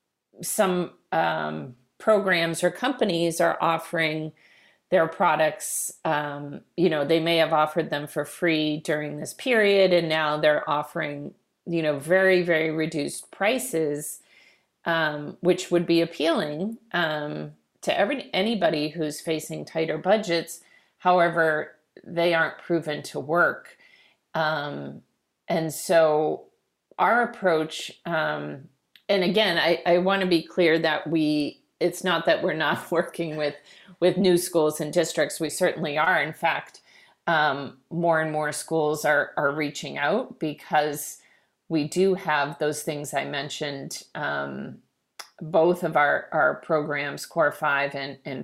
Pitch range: 150-175 Hz